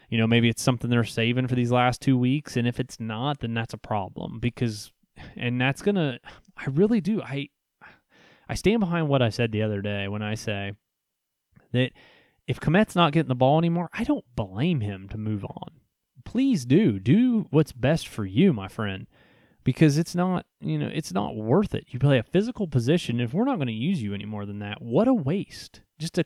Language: English